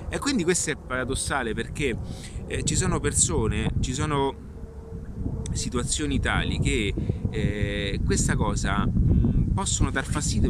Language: Italian